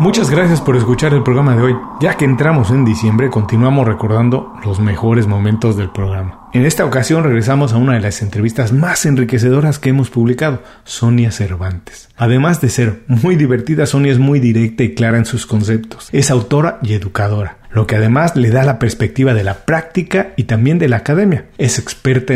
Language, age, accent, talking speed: Spanish, 40-59, Mexican, 190 wpm